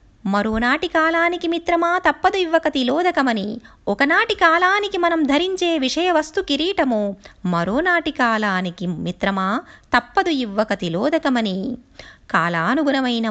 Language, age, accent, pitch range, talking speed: Telugu, 20-39, native, 210-320 Hz, 80 wpm